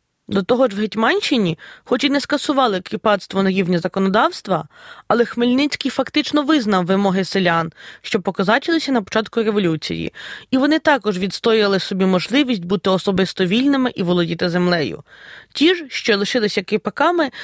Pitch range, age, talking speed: 195-275 Hz, 20-39, 140 wpm